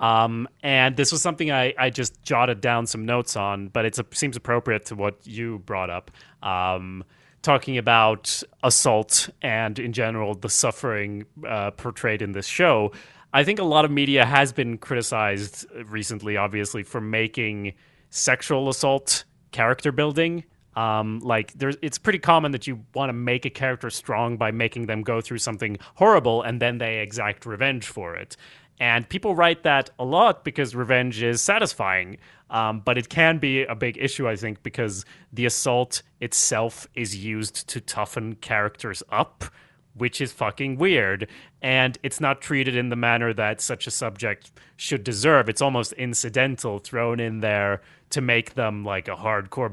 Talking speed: 170 wpm